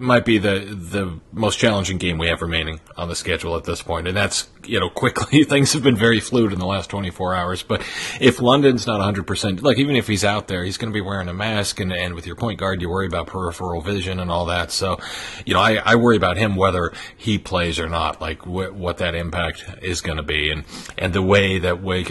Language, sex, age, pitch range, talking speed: English, male, 40-59, 85-105 Hz, 245 wpm